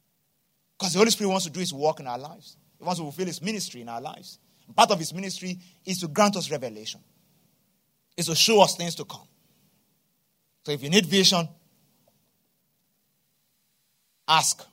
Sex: male